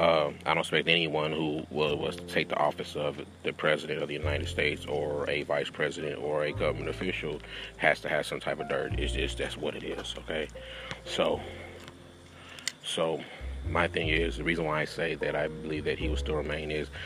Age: 30-49